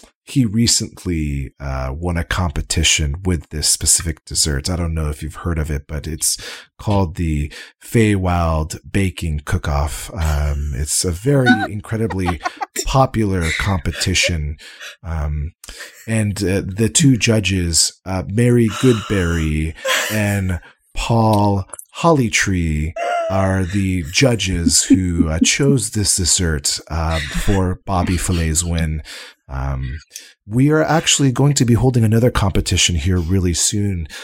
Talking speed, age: 125 wpm, 30-49